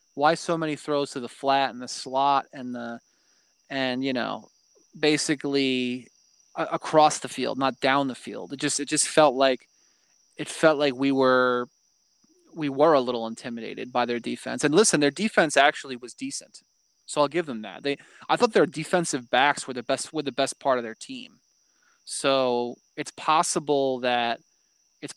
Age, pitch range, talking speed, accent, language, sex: 20-39, 125-150 Hz, 180 wpm, American, English, male